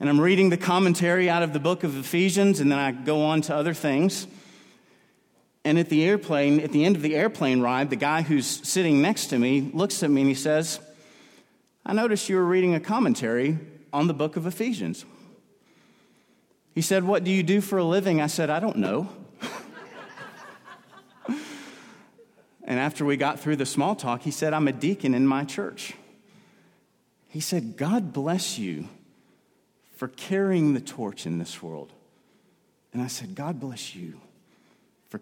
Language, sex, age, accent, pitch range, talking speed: English, male, 40-59, American, 145-225 Hz, 175 wpm